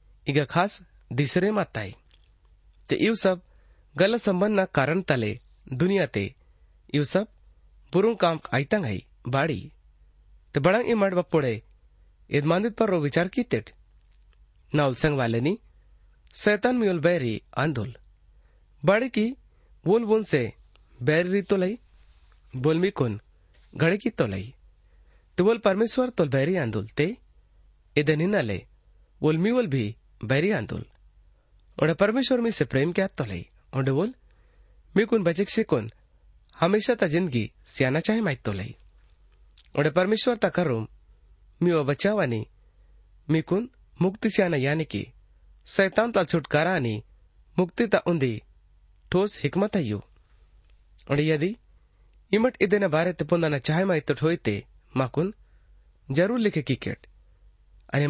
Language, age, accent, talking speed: Hindi, 30-49, native, 100 wpm